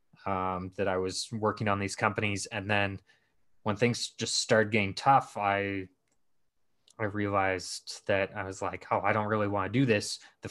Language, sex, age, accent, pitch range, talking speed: English, male, 20-39, American, 100-120 Hz, 185 wpm